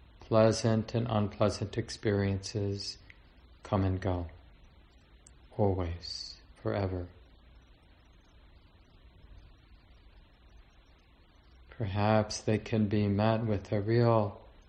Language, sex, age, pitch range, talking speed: English, male, 40-59, 80-110 Hz, 70 wpm